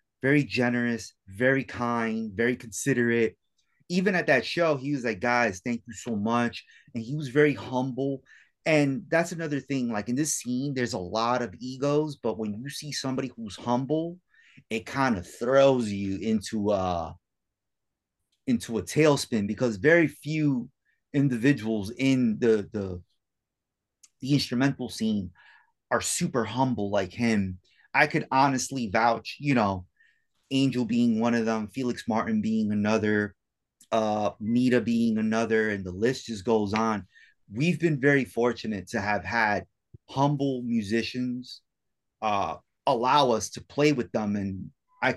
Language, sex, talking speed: English, male, 145 wpm